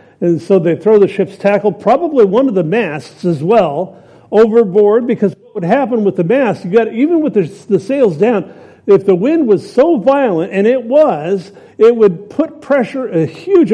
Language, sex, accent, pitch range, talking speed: English, male, American, 170-225 Hz, 195 wpm